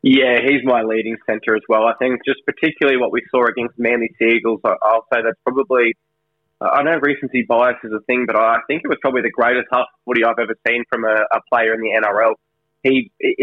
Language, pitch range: English, 115-135 Hz